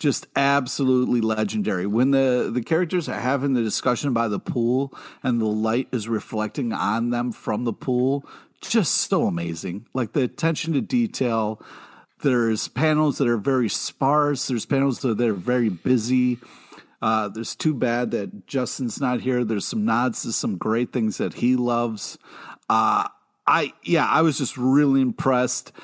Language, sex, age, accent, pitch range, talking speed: English, male, 50-69, American, 110-135 Hz, 165 wpm